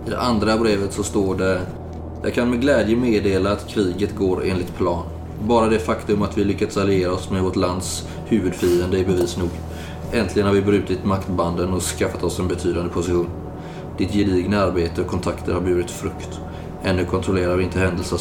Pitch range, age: 90-105 Hz, 20-39